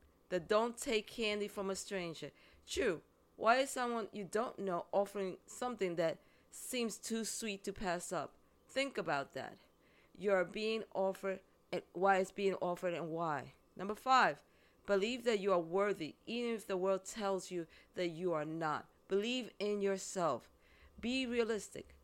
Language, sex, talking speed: English, female, 160 wpm